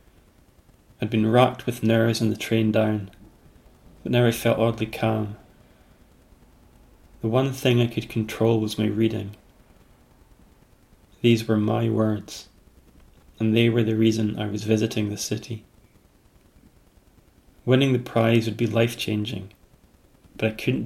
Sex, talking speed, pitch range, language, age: male, 135 wpm, 105-115 Hz, English, 30-49